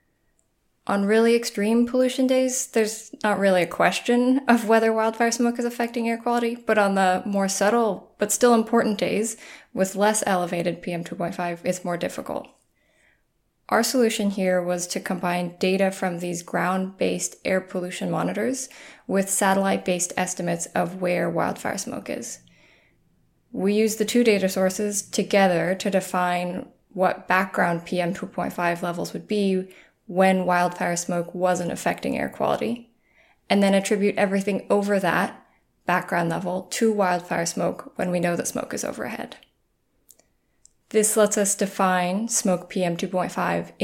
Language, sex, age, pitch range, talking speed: English, female, 10-29, 180-215 Hz, 140 wpm